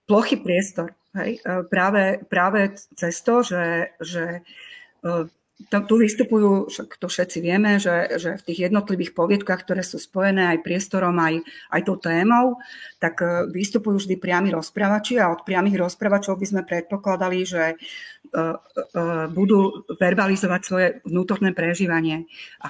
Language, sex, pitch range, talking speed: Slovak, female, 170-200 Hz, 130 wpm